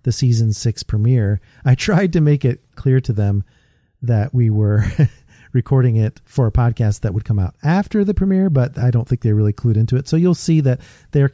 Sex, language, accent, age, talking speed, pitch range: male, English, American, 40-59, 215 wpm, 110-140 Hz